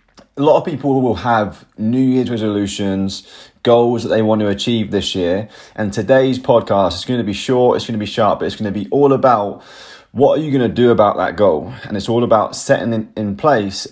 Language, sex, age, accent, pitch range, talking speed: English, male, 20-39, British, 105-125 Hz, 230 wpm